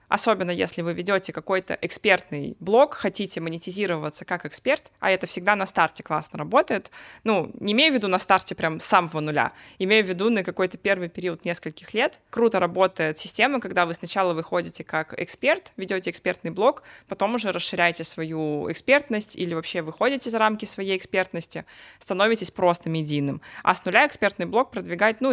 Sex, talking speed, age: female, 170 wpm, 20-39